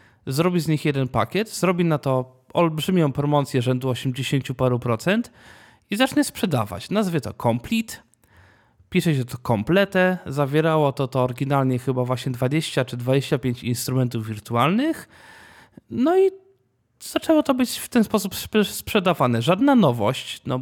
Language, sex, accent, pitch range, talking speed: Polish, male, native, 125-170 Hz, 135 wpm